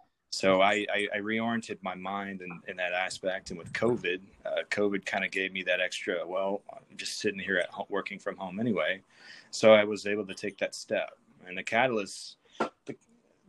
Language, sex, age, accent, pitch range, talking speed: English, male, 30-49, American, 90-110 Hz, 200 wpm